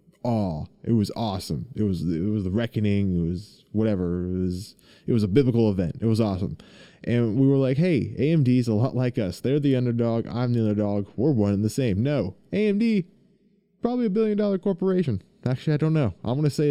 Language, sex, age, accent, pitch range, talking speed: English, male, 20-39, American, 105-155 Hz, 210 wpm